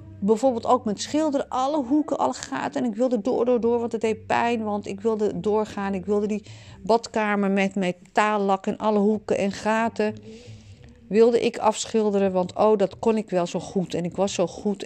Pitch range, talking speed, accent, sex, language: 175-225 Hz, 200 wpm, Dutch, female, Dutch